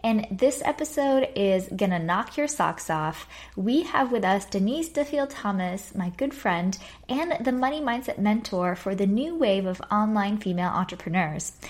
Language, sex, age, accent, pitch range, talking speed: English, female, 10-29, American, 185-245 Hz, 170 wpm